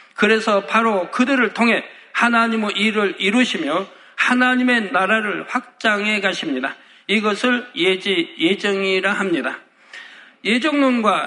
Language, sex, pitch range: Korean, male, 195-230 Hz